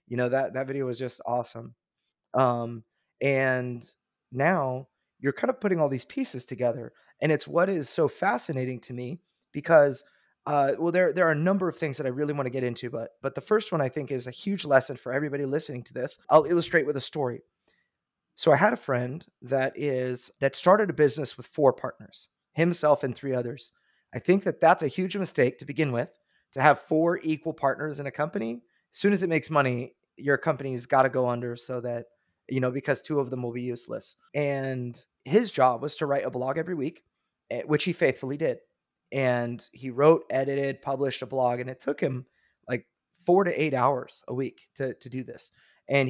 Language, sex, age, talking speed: English, male, 30-49, 210 wpm